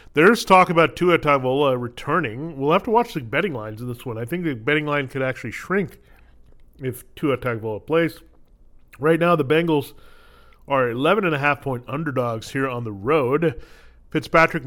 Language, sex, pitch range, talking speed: English, male, 120-155 Hz, 165 wpm